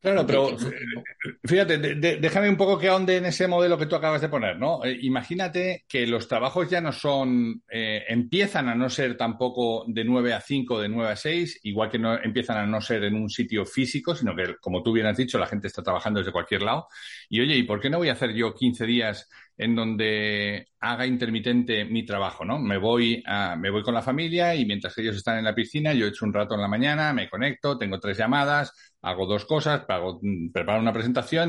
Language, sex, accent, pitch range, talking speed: Spanish, male, Spanish, 115-155 Hz, 225 wpm